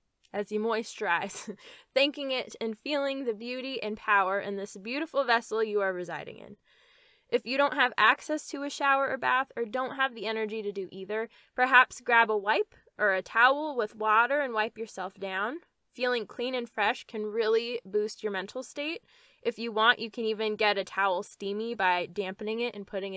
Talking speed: 195 wpm